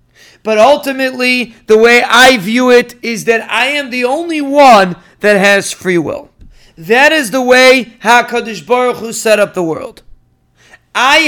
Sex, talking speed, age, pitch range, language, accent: male, 160 wpm, 40-59, 215-255 Hz, English, American